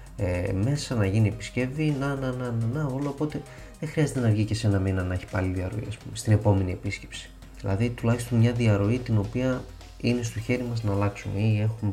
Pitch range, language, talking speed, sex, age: 95-120 Hz, Greek, 200 wpm, male, 30-49